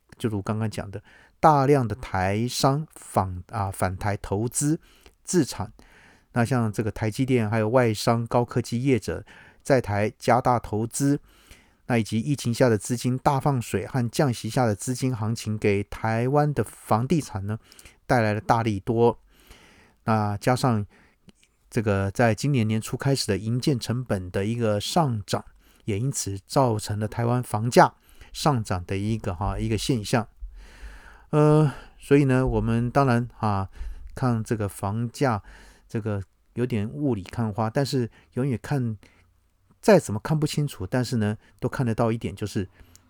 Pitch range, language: 100-125 Hz, Chinese